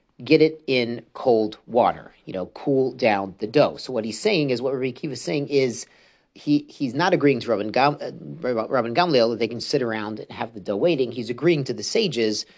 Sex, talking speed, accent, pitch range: male, 215 wpm, American, 120-145 Hz